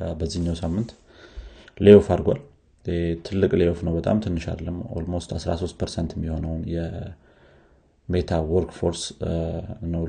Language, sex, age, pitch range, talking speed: Amharic, male, 30-49, 85-100 Hz, 95 wpm